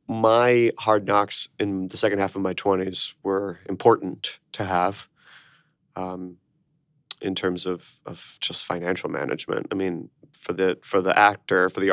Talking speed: 155 wpm